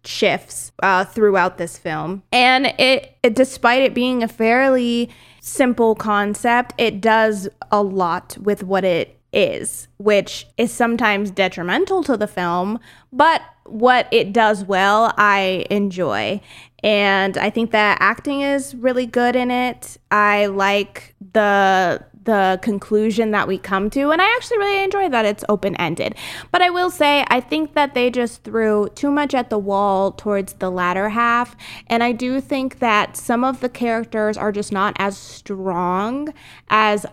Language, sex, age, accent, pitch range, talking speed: English, female, 20-39, American, 200-250 Hz, 160 wpm